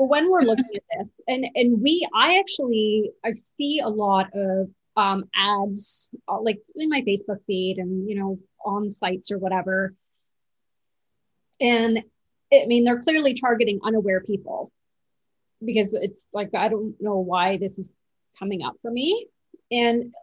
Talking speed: 155 wpm